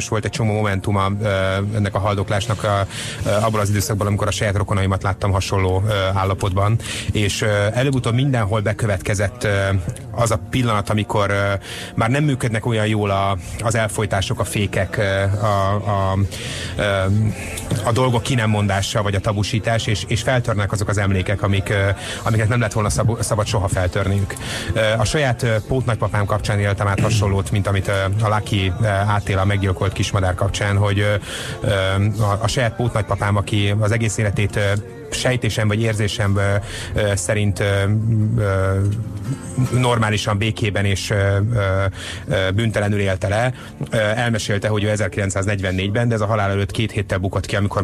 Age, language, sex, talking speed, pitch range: 30-49, Hungarian, male, 140 wpm, 100-110 Hz